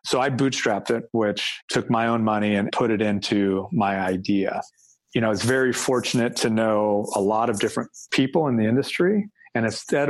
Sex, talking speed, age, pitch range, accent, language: male, 195 wpm, 40-59, 105-125 Hz, American, English